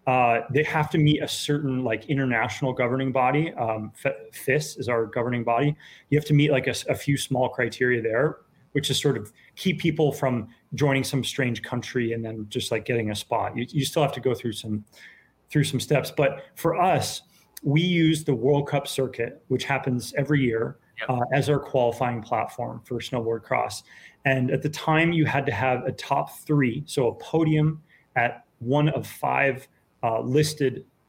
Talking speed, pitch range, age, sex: 185 wpm, 125-150 Hz, 30-49, male